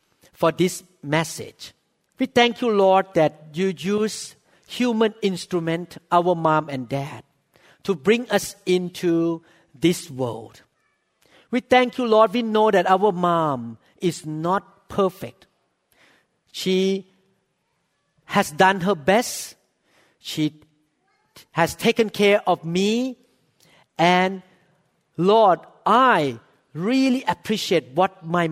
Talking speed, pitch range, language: 110 wpm, 165-225 Hz, English